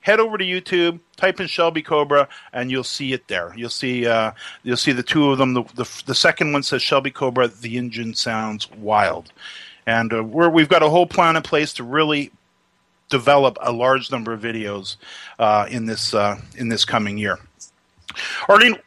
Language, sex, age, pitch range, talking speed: English, male, 40-59, 120-160 Hz, 195 wpm